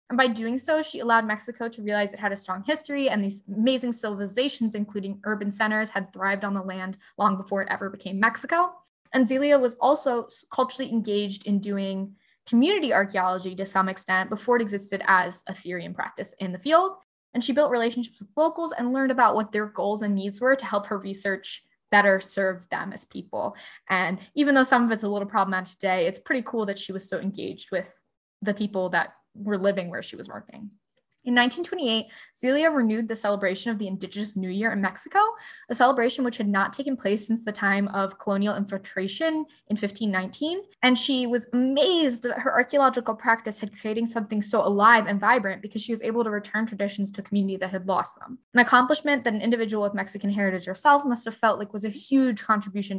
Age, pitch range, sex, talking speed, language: 10-29, 200-250 Hz, female, 205 wpm, English